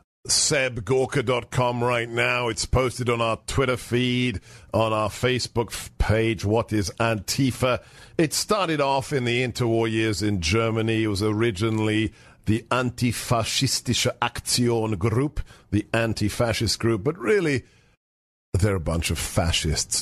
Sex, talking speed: male, 130 wpm